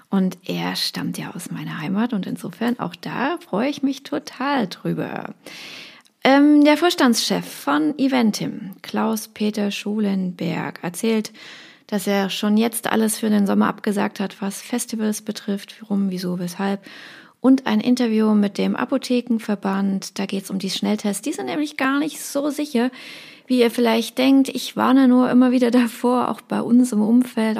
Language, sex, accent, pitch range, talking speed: German, female, German, 205-255 Hz, 160 wpm